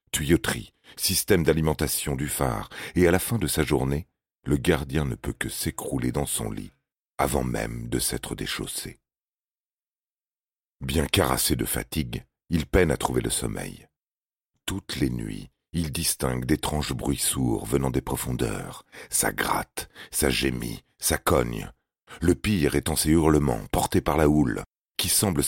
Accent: French